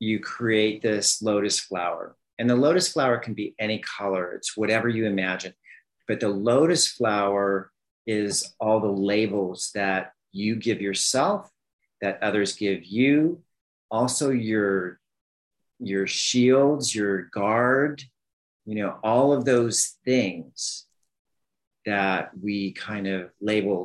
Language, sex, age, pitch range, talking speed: English, male, 40-59, 95-110 Hz, 125 wpm